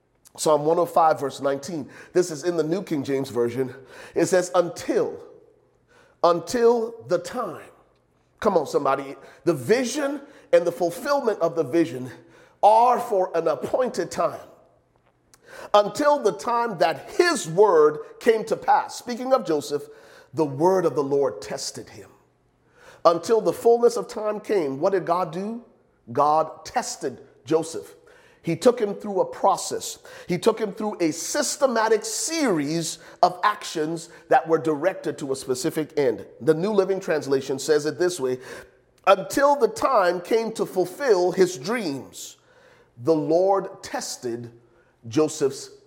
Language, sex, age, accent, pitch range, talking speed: English, male, 40-59, American, 155-240 Hz, 145 wpm